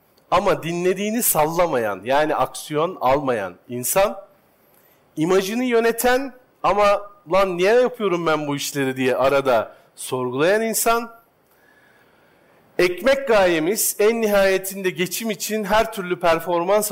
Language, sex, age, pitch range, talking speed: Turkish, male, 50-69, 150-210 Hz, 105 wpm